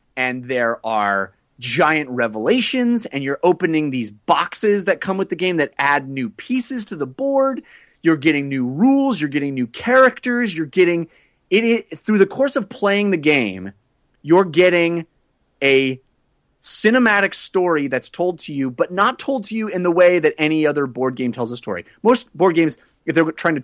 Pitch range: 140-205 Hz